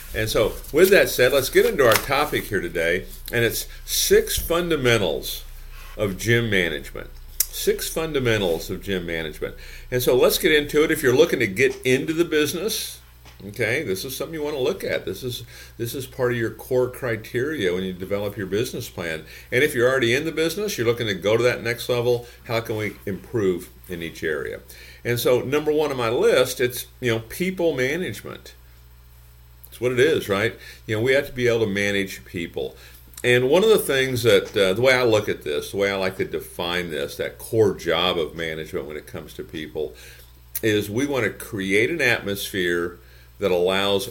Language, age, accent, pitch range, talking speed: English, 50-69, American, 80-130 Hz, 200 wpm